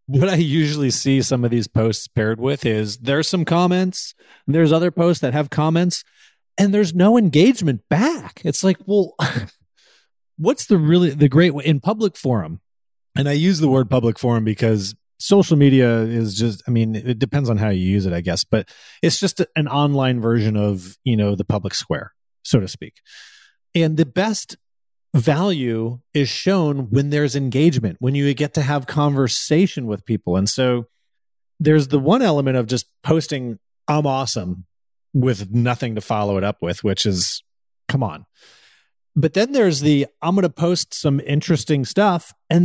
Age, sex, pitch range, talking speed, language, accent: 30-49, male, 115-165 Hz, 175 wpm, English, American